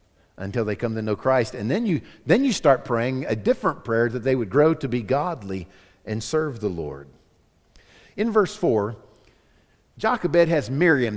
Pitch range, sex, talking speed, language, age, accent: 105-170 Hz, male, 175 wpm, English, 50-69, American